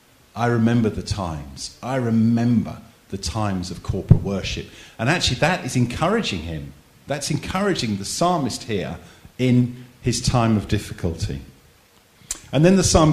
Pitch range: 95-130 Hz